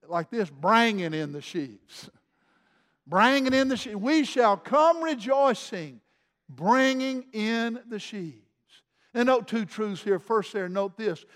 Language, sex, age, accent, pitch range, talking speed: English, male, 50-69, American, 190-240 Hz, 145 wpm